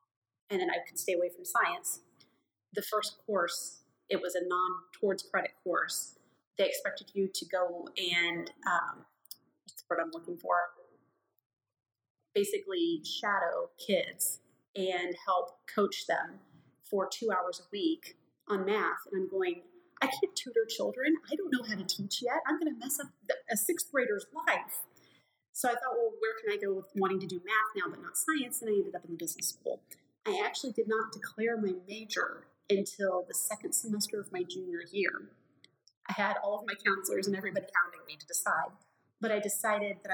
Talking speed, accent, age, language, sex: 185 wpm, American, 30-49, English, female